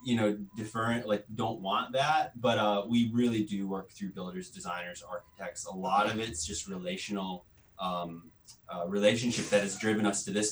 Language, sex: English, male